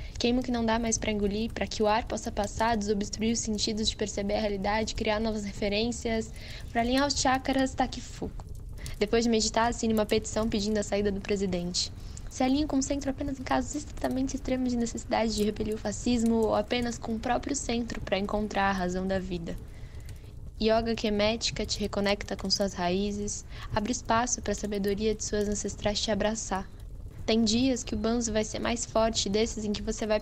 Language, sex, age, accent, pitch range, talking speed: Portuguese, female, 10-29, Brazilian, 205-225 Hz, 205 wpm